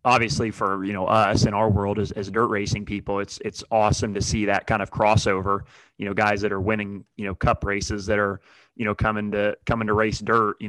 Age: 20-39